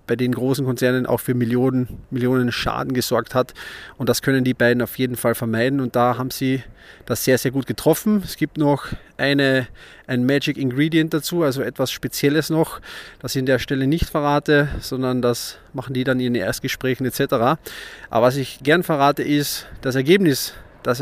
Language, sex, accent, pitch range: German, male, German, 125-145 Hz